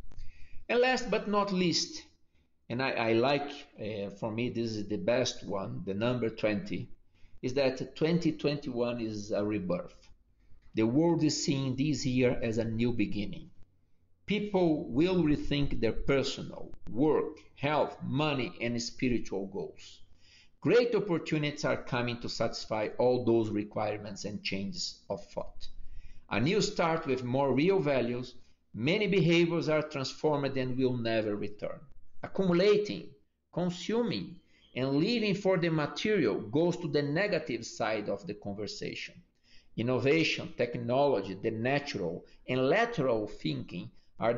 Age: 50-69